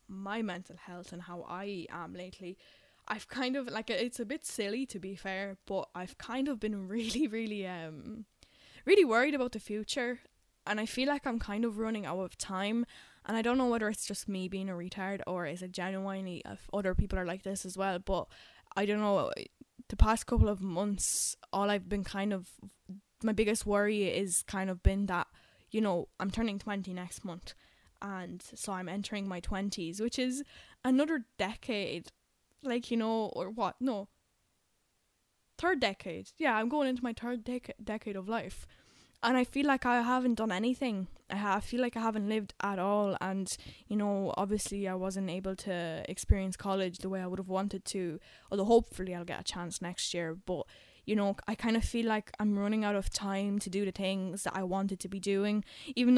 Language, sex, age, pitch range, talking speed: English, female, 10-29, 190-230 Hz, 200 wpm